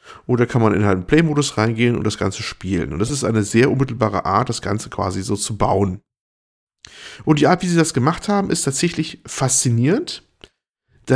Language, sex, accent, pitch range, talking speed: German, male, German, 115-140 Hz, 200 wpm